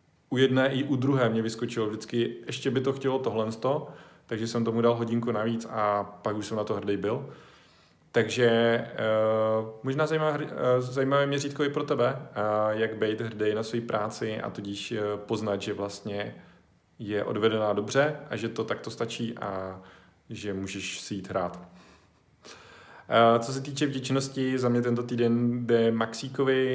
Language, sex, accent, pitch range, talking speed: Czech, male, native, 100-120 Hz, 165 wpm